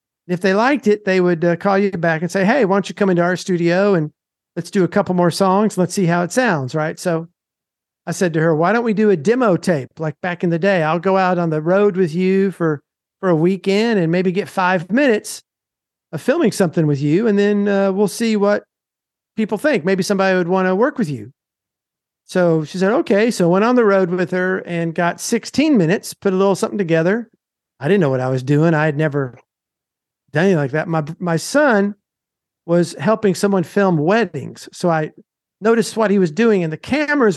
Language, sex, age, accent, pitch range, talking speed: English, male, 50-69, American, 165-205 Hz, 225 wpm